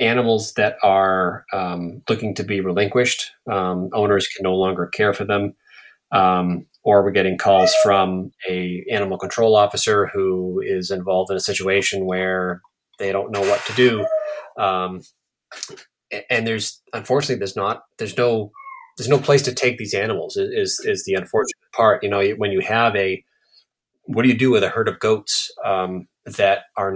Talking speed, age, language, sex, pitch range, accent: 170 wpm, 30-49, English, male, 95-115 Hz, American